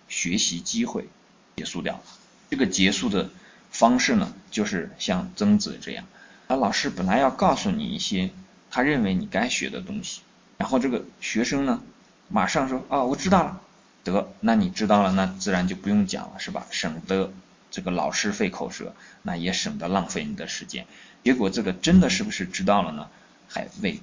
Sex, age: male, 20-39